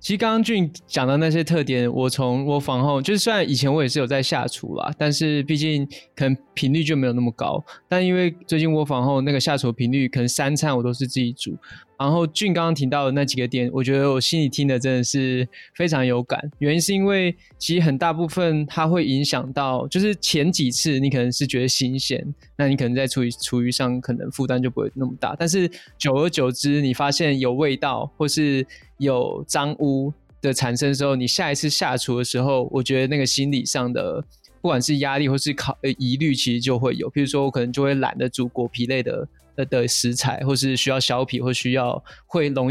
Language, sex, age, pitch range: Chinese, male, 20-39, 125-150 Hz